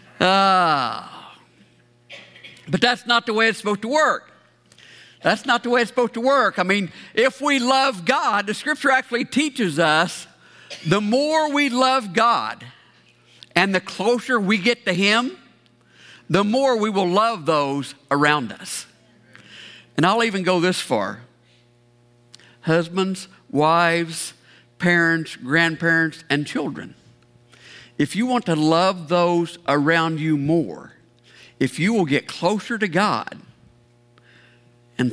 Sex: male